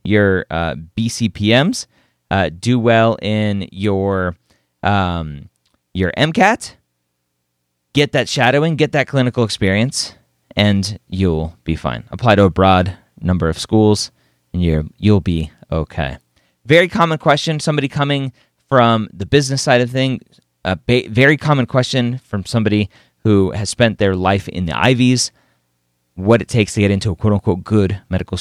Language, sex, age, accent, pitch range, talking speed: English, male, 30-49, American, 85-120 Hz, 150 wpm